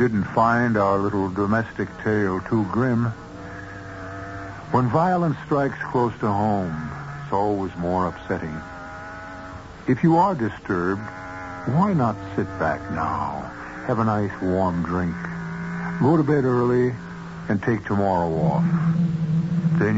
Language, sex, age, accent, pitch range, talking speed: English, male, 60-79, American, 95-130 Hz, 125 wpm